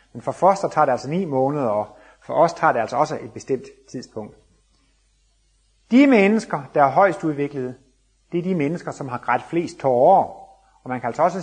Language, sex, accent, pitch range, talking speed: Danish, male, native, 125-185 Hz, 200 wpm